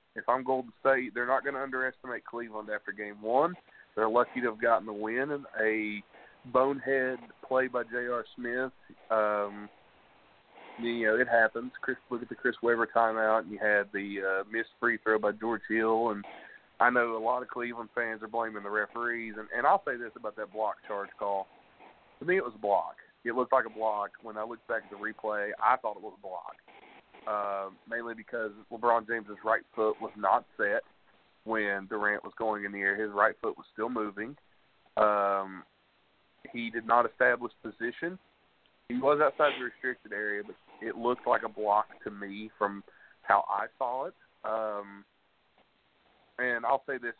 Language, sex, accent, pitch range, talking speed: English, male, American, 105-120 Hz, 190 wpm